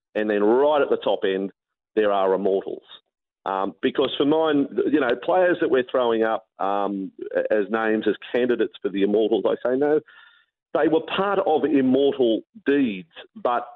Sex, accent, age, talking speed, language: male, Australian, 40-59, 170 wpm, English